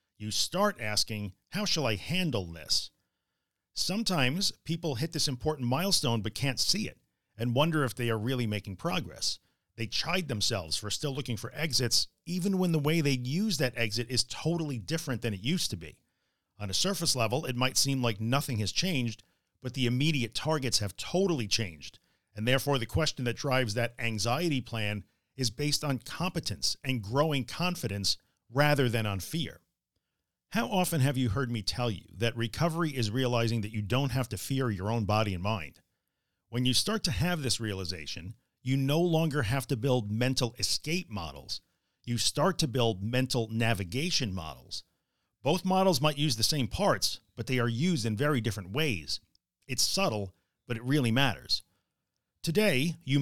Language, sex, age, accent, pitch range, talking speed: English, male, 40-59, American, 105-150 Hz, 175 wpm